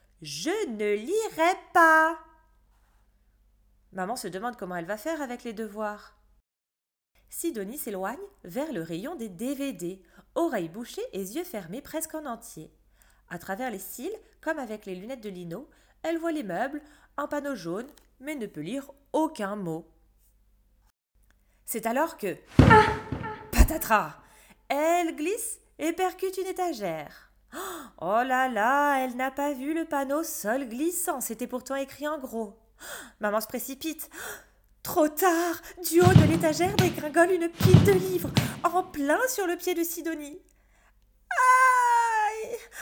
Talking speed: 140 wpm